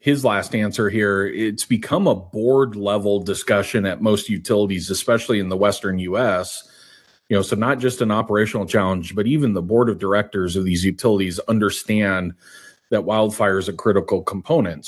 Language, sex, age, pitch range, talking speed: English, male, 30-49, 100-115 Hz, 170 wpm